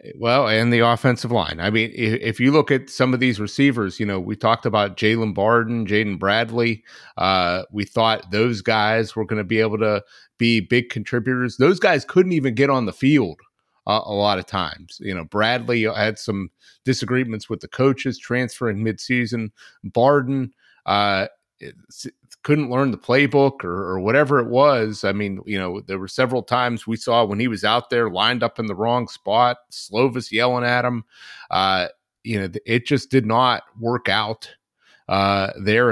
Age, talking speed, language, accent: 30-49, 185 wpm, English, American